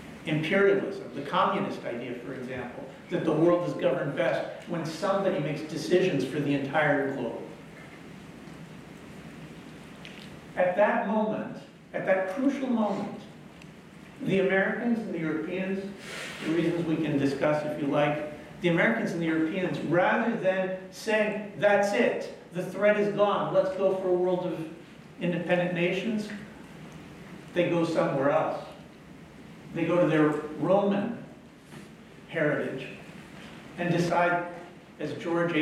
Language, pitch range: English, 155-195 Hz